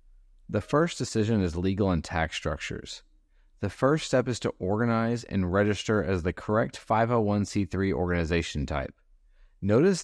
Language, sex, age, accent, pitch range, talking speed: English, male, 30-49, American, 95-120 Hz, 135 wpm